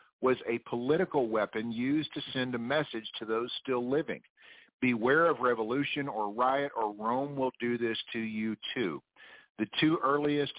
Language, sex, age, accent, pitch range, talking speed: English, male, 50-69, American, 115-145 Hz, 165 wpm